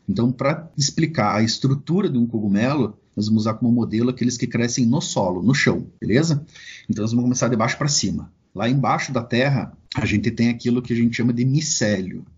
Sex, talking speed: male, 210 wpm